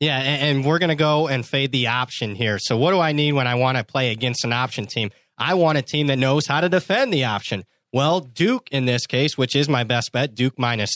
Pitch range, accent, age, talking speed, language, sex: 130-165 Hz, American, 30-49, 255 wpm, English, male